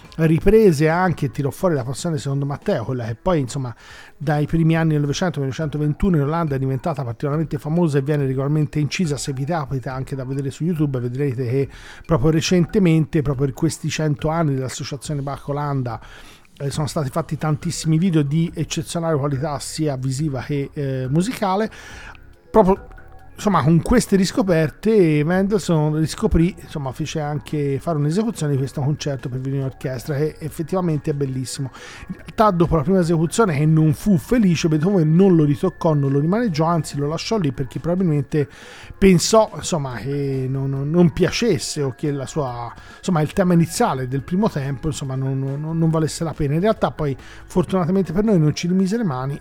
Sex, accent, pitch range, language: male, native, 140-175 Hz, Italian